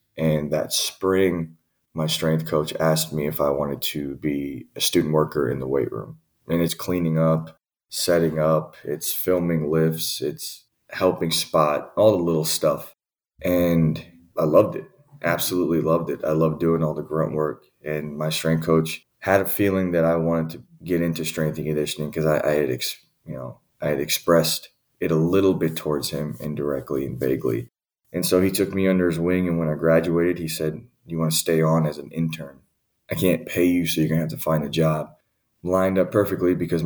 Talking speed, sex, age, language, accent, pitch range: 200 wpm, male, 20-39, English, American, 80-90 Hz